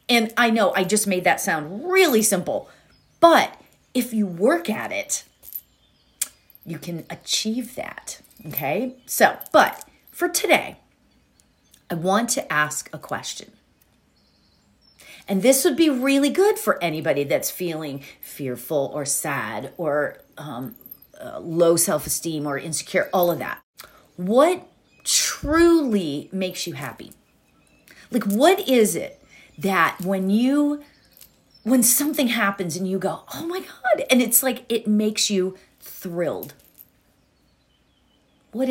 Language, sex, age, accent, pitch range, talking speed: English, female, 40-59, American, 175-255 Hz, 130 wpm